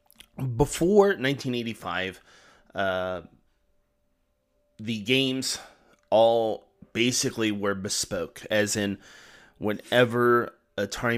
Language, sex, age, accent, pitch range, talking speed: English, male, 20-39, American, 100-125 Hz, 70 wpm